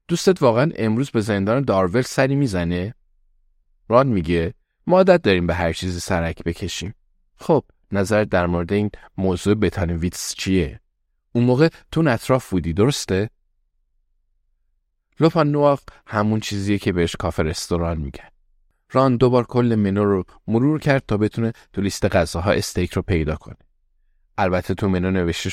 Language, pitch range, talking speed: Persian, 85-120 Hz, 140 wpm